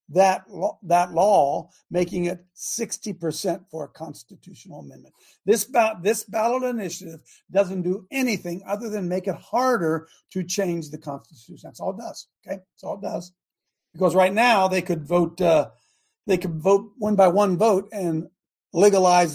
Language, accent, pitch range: English, American, 160-200 Hz